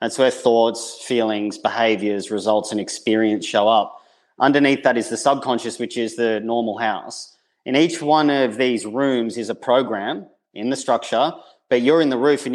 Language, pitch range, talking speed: English, 115-130 Hz, 180 wpm